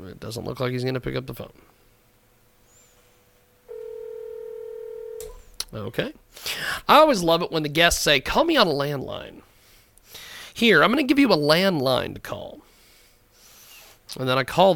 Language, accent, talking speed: English, American, 160 wpm